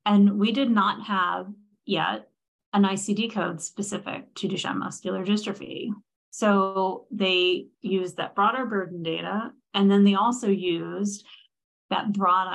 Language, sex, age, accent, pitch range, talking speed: English, female, 30-49, American, 180-210 Hz, 135 wpm